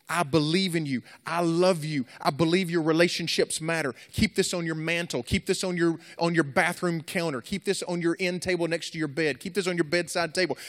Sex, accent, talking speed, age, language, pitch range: male, American, 230 wpm, 30-49, English, 120-175 Hz